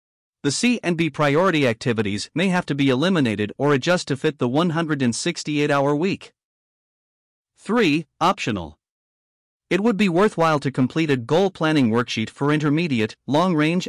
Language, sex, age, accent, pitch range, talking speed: English, male, 40-59, American, 130-175 Hz, 145 wpm